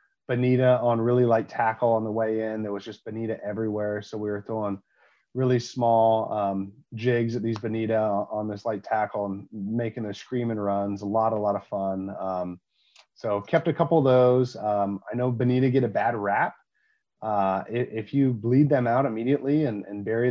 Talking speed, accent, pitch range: 190 wpm, American, 105-130 Hz